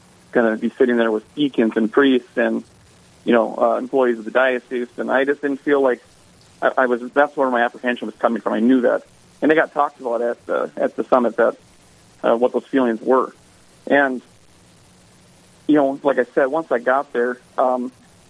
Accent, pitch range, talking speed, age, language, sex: American, 120-140 Hz, 205 wpm, 40-59, English, male